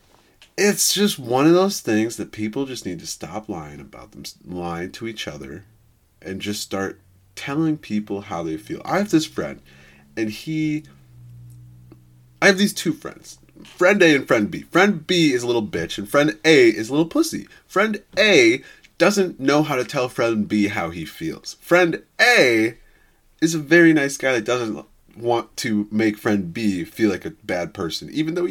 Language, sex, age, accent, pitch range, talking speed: English, male, 30-49, American, 95-160 Hz, 185 wpm